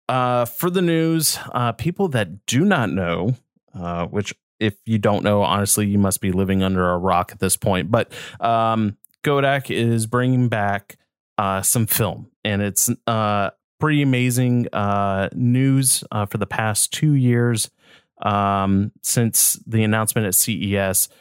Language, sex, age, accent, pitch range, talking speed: English, male, 30-49, American, 100-125 Hz, 160 wpm